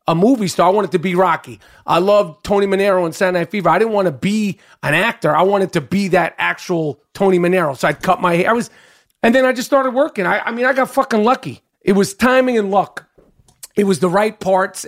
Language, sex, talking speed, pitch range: English, male, 245 wpm, 175-220 Hz